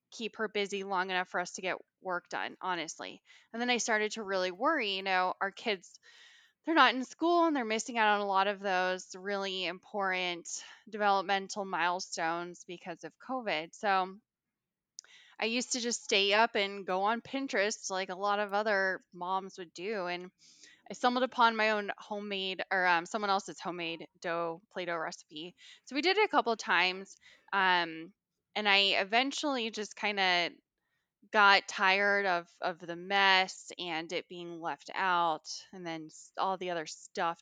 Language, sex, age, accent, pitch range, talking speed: English, female, 10-29, American, 180-220 Hz, 175 wpm